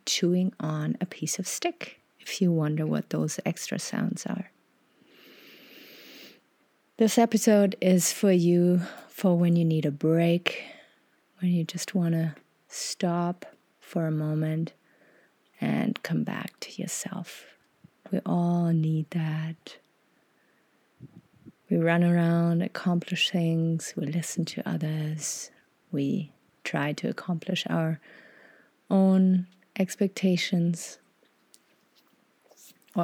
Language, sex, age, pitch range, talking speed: English, female, 30-49, 160-185 Hz, 105 wpm